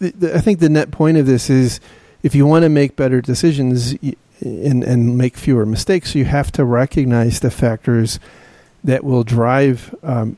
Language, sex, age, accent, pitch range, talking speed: English, male, 40-59, American, 125-145 Hz, 175 wpm